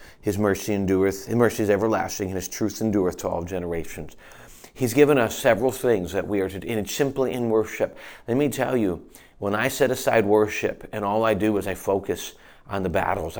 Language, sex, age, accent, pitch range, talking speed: English, male, 40-59, American, 100-130 Hz, 215 wpm